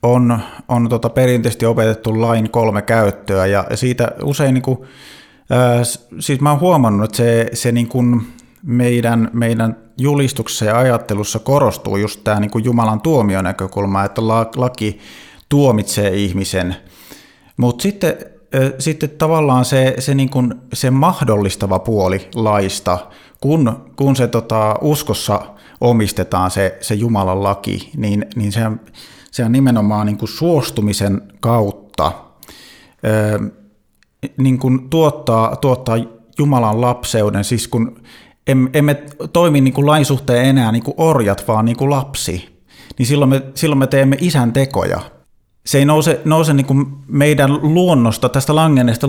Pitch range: 105-135 Hz